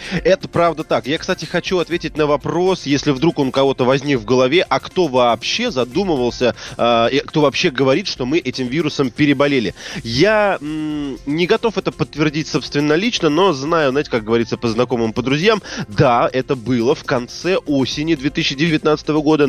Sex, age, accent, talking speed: male, 20-39, native, 160 wpm